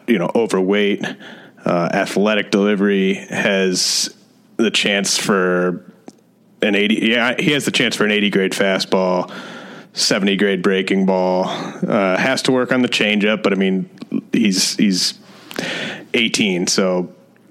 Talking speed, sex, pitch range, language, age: 140 wpm, male, 95-105 Hz, English, 30-49